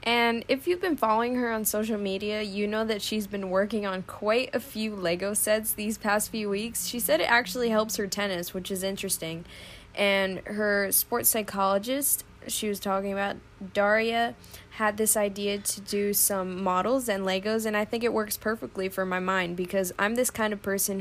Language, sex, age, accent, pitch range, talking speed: English, female, 10-29, American, 190-220 Hz, 195 wpm